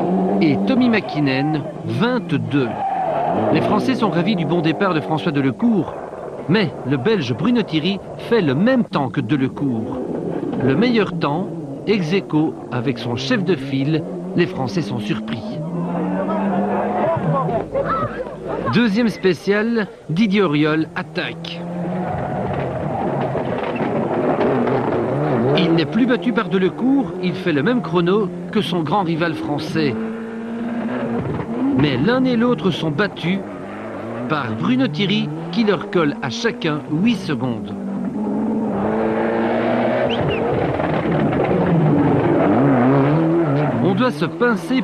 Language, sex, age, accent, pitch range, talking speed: French, male, 50-69, French, 160-220 Hz, 105 wpm